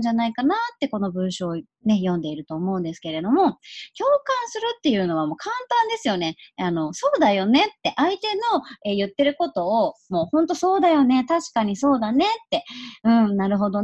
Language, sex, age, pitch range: Japanese, male, 30-49, 180-300 Hz